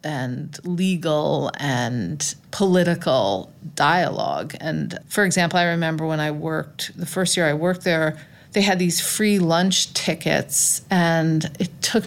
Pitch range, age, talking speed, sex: 155-185 Hz, 40-59, 140 wpm, female